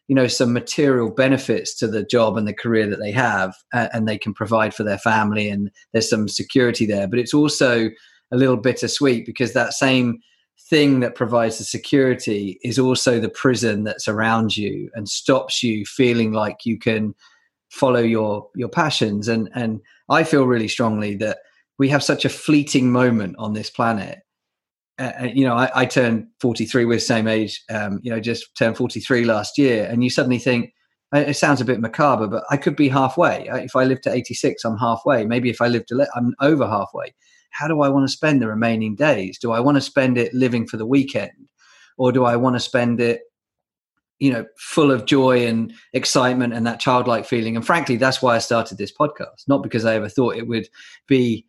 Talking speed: 205 wpm